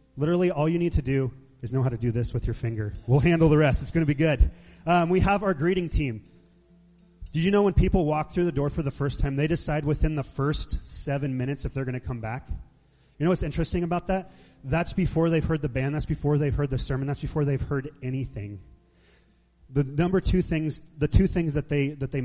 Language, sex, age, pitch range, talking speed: English, male, 30-49, 130-170 Hz, 245 wpm